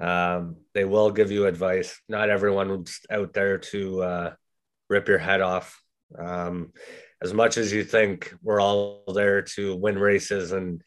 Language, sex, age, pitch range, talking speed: English, male, 30-49, 90-100 Hz, 160 wpm